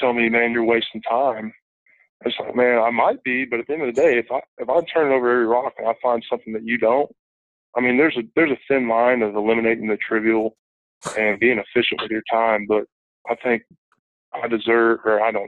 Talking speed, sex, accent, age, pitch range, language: 235 wpm, male, American, 20-39, 110-120 Hz, English